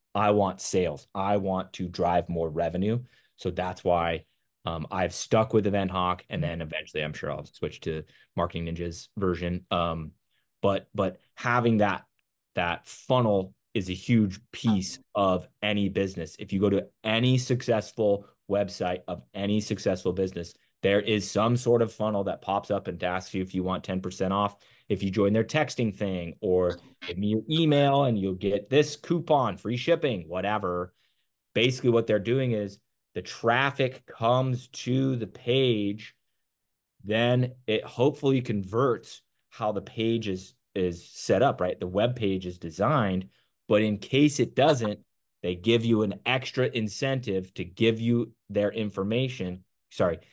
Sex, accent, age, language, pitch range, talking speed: male, American, 30-49, English, 95-120 Hz, 160 wpm